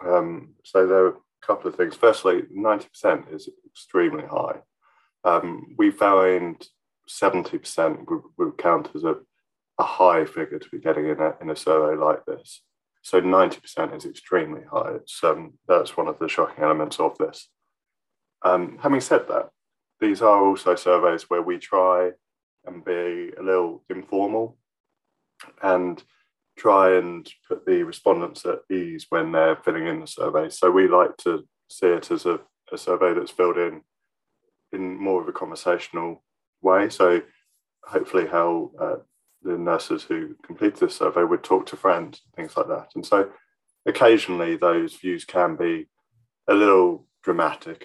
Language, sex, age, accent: English, male, 20-39, British